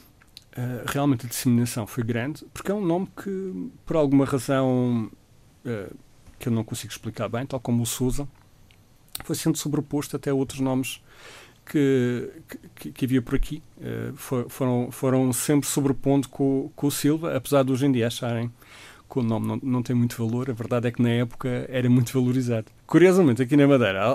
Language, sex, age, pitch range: Portuguese, male, 40-59, 120-145 Hz